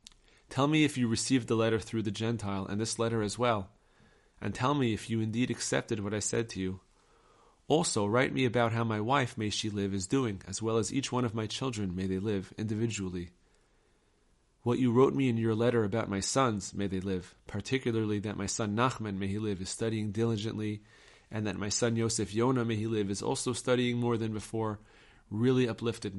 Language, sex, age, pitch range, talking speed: English, male, 30-49, 100-125 Hz, 210 wpm